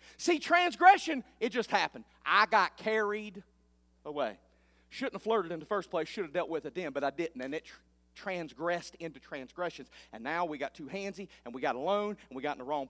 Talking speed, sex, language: 215 wpm, male, English